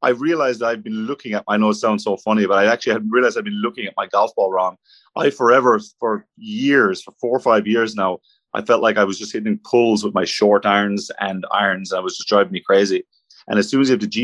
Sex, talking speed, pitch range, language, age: male, 265 wpm, 100-120 Hz, English, 30-49